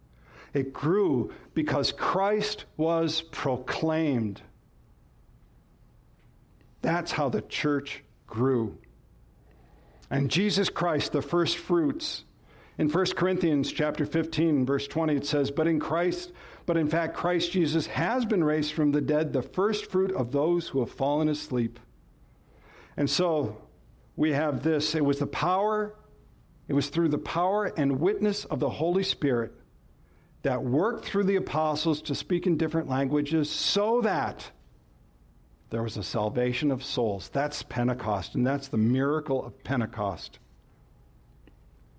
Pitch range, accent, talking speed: 125-175 Hz, American, 135 wpm